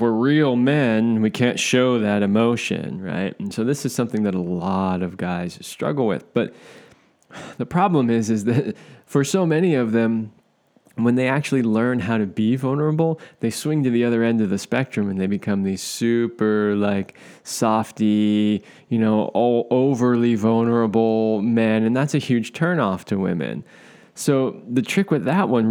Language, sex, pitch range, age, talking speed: English, male, 110-135 Hz, 20-39, 175 wpm